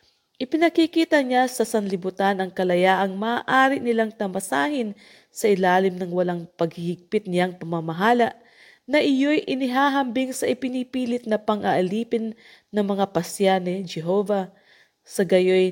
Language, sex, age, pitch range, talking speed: English, female, 20-39, 185-230 Hz, 110 wpm